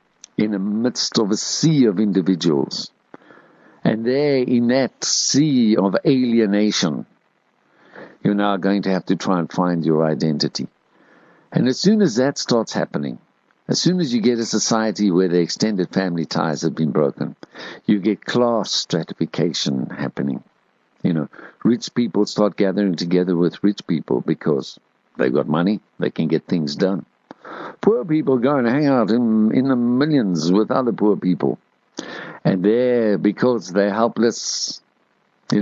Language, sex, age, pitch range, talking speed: English, male, 60-79, 95-120 Hz, 155 wpm